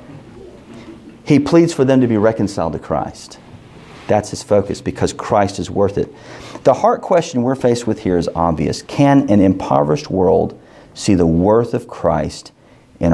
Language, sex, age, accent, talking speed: English, male, 40-59, American, 165 wpm